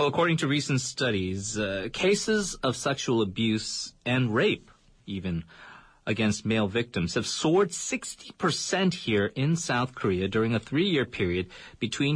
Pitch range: 110-145 Hz